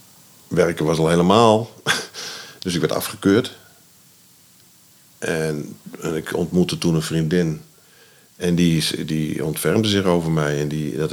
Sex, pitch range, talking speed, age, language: male, 75-95 Hz, 135 wpm, 50-69, Dutch